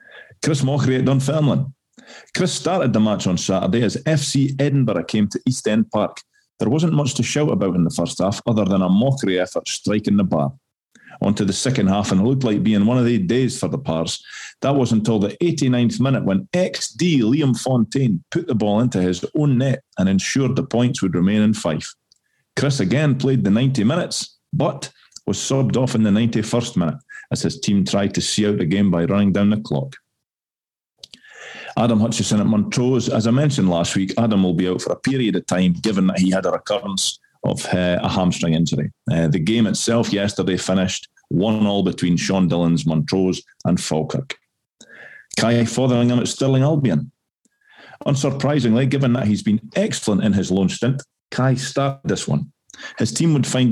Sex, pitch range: male, 95-130 Hz